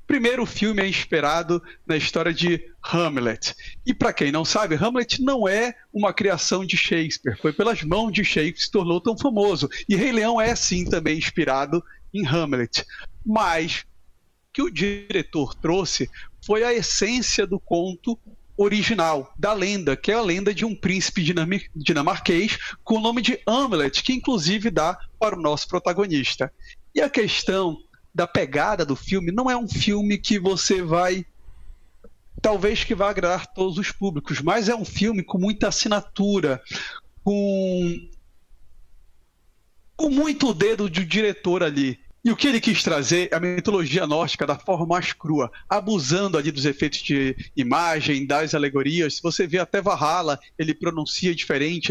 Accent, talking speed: Brazilian, 160 wpm